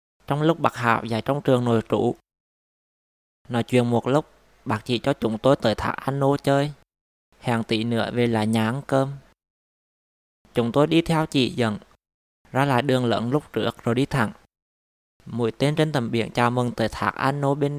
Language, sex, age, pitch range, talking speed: Vietnamese, male, 20-39, 110-135 Hz, 195 wpm